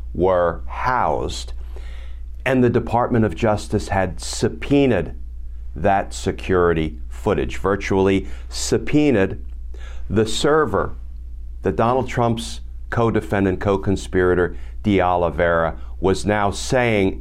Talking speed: 90 wpm